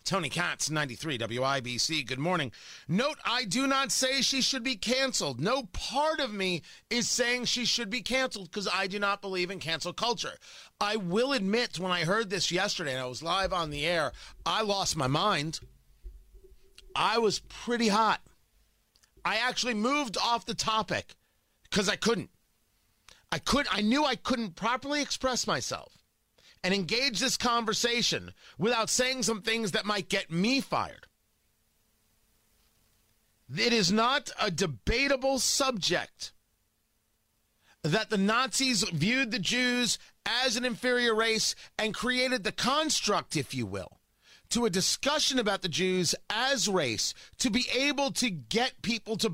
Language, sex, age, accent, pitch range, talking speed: English, male, 40-59, American, 170-250 Hz, 150 wpm